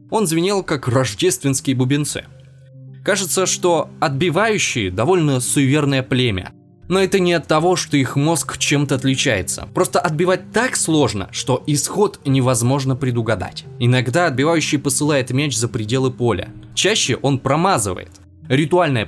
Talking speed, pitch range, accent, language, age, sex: 125 wpm, 120-160 Hz, native, Russian, 20-39, male